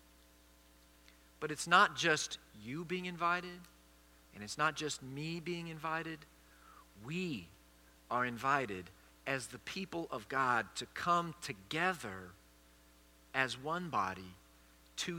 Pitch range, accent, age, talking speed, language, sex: 95-160 Hz, American, 50-69, 115 wpm, English, male